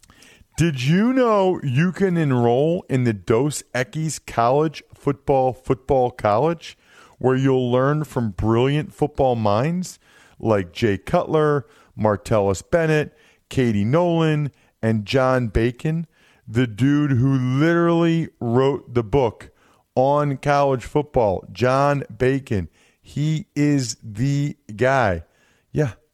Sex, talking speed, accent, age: male, 110 wpm, American, 40-59